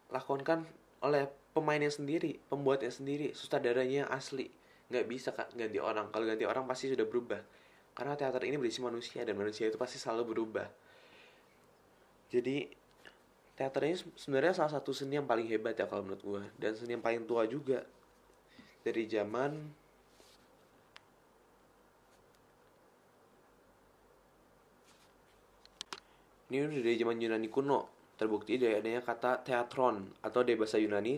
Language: Indonesian